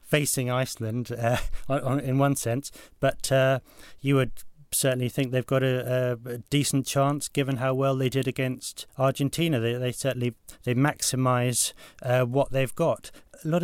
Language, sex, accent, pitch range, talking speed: English, male, British, 120-140 Hz, 160 wpm